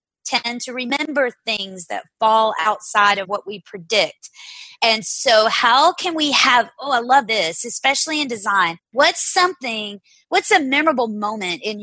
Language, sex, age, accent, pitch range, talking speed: English, female, 30-49, American, 205-255 Hz, 155 wpm